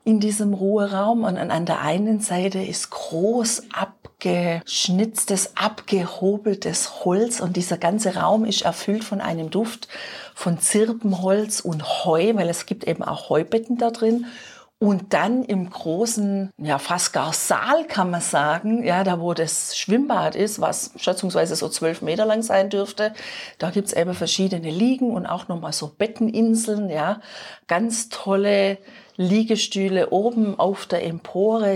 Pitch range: 175-220 Hz